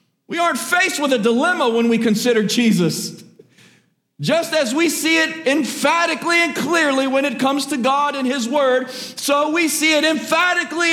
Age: 50-69